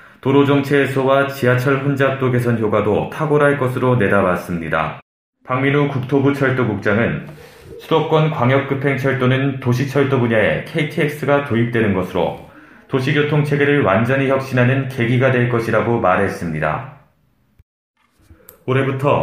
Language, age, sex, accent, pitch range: Korean, 30-49, male, native, 120-145 Hz